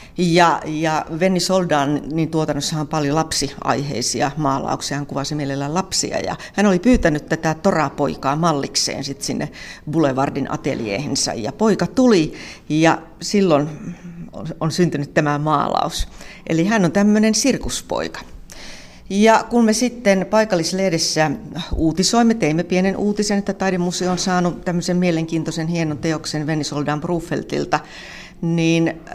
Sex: female